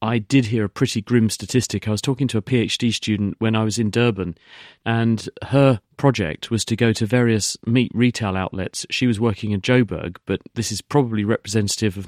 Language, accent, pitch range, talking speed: English, British, 105-120 Hz, 205 wpm